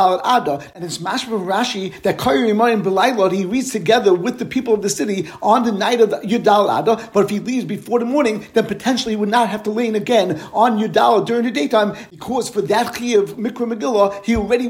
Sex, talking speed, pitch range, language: male, 215 wpm, 200-240 Hz, English